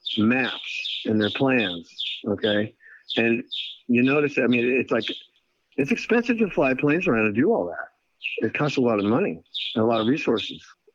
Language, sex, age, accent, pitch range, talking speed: English, male, 50-69, American, 105-130 Hz, 180 wpm